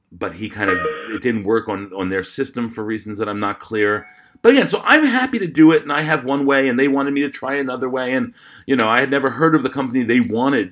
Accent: American